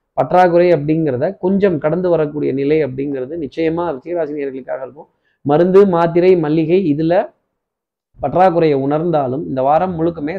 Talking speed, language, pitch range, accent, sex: 110 wpm, Tamil, 150-180 Hz, native, male